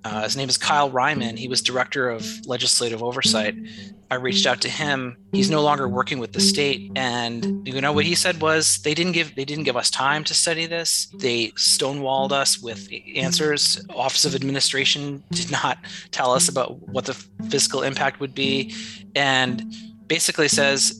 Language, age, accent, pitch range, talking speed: English, 30-49, American, 115-155 Hz, 185 wpm